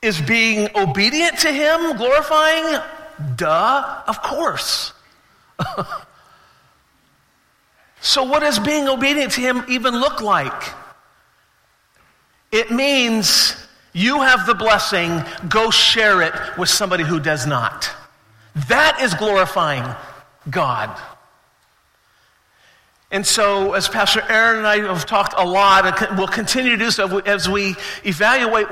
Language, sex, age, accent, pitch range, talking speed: English, male, 50-69, American, 195-260 Hz, 120 wpm